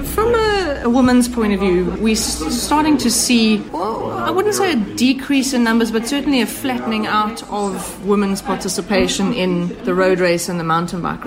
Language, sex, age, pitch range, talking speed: English, female, 30-49, 180-215 Hz, 180 wpm